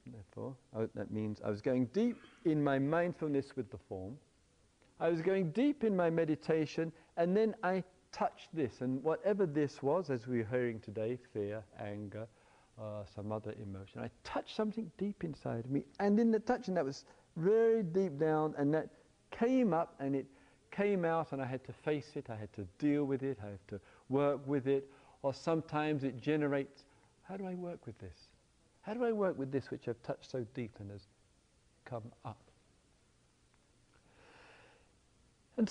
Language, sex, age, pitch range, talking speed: English, male, 50-69, 125-205 Hz, 180 wpm